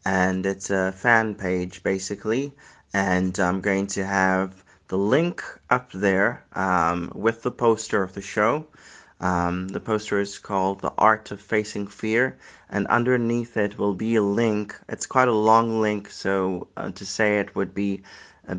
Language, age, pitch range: English, 30-49, 95-110 Hz